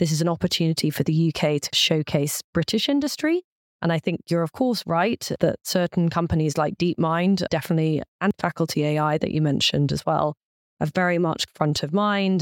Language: English